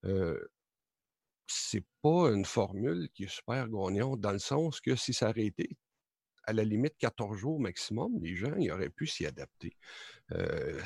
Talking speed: 170 wpm